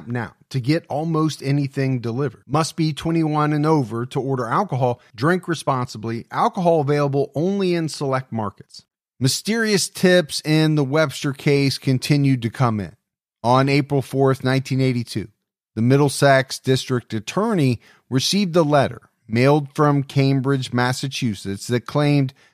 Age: 40-59